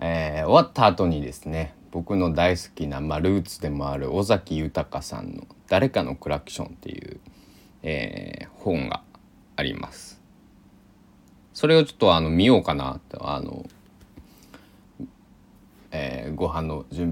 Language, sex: Japanese, male